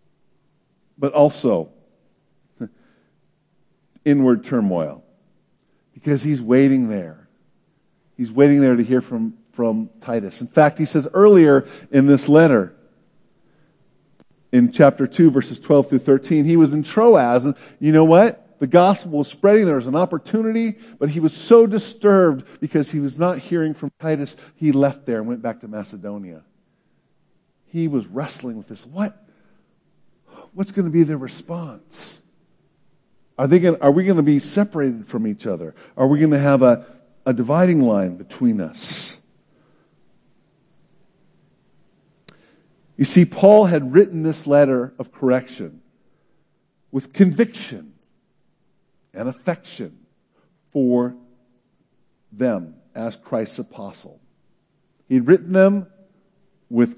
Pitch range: 130-180 Hz